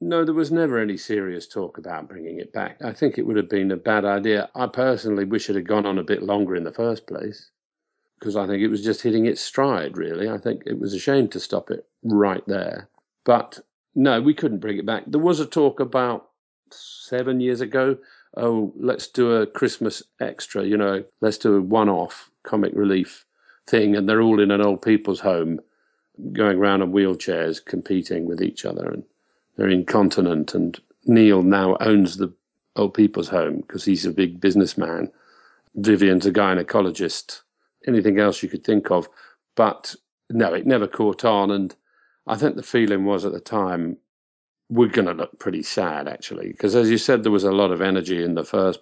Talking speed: 200 wpm